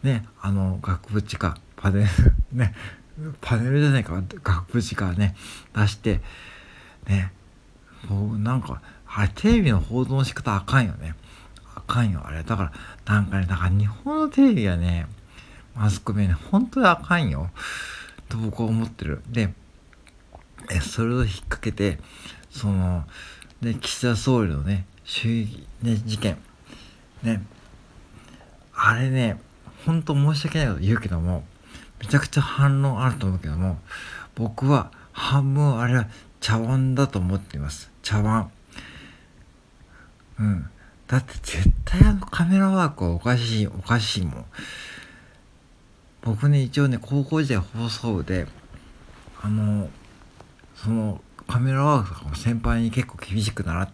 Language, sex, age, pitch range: Japanese, male, 60-79, 95-125 Hz